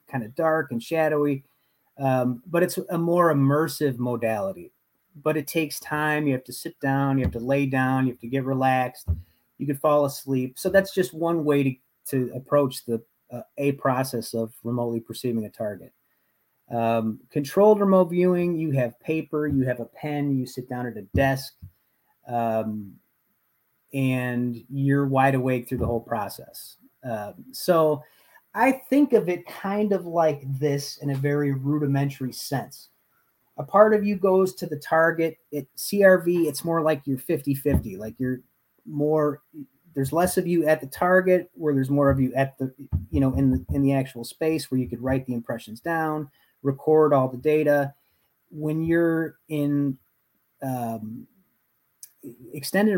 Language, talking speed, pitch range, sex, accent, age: English, 170 wpm, 130-160 Hz, male, American, 30-49